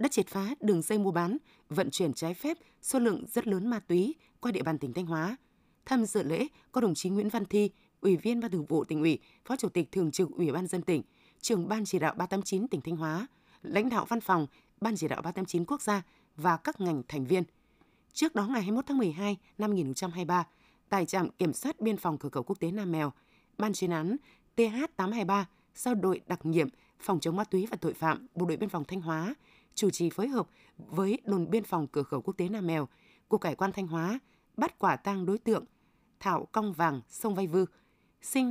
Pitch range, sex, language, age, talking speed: 170-225 Hz, female, Vietnamese, 20-39, 225 wpm